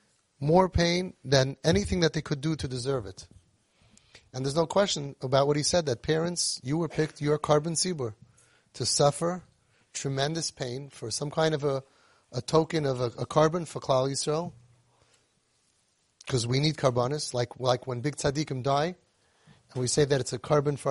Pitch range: 125-160 Hz